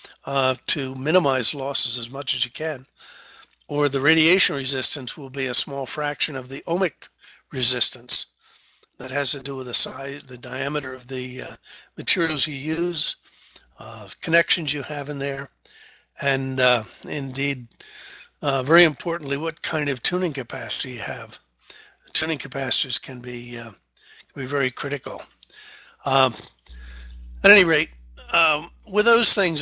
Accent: American